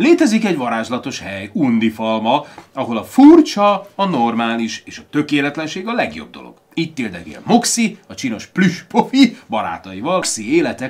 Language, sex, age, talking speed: Hungarian, male, 30-49, 140 wpm